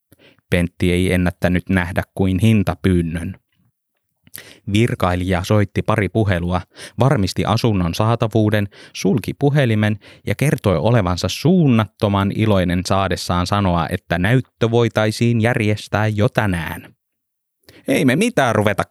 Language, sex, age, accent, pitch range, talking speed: Finnish, male, 20-39, native, 90-110 Hz, 100 wpm